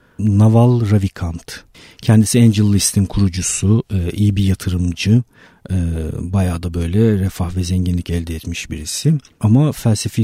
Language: Turkish